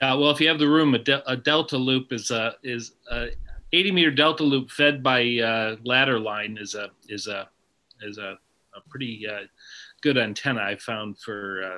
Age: 40-59